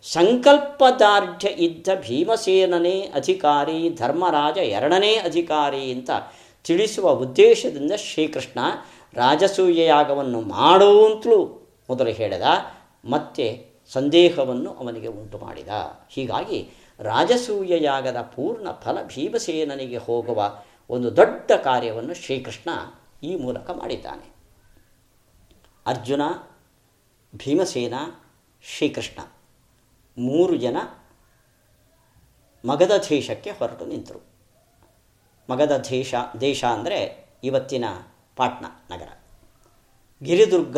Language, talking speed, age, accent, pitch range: Kannada, 75 wpm, 50-69, native, 120-190 Hz